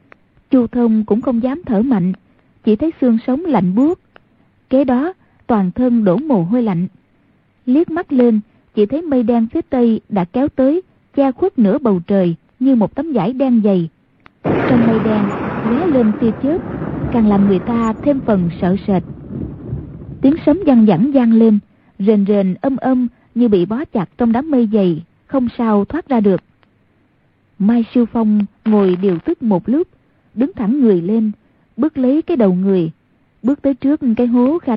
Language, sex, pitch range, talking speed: Vietnamese, female, 205-265 Hz, 180 wpm